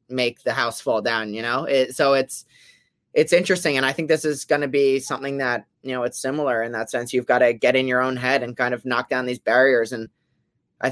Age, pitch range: 20-39, 120-135 Hz